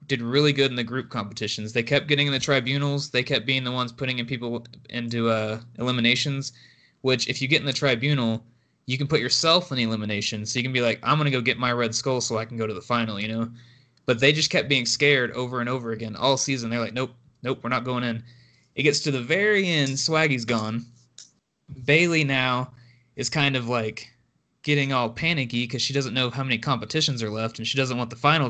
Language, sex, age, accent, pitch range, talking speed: English, male, 20-39, American, 120-145 Hz, 235 wpm